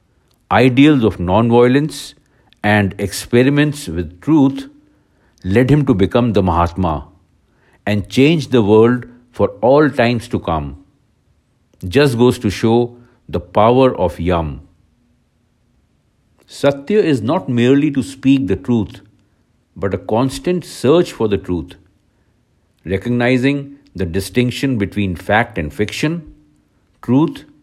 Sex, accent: male, Indian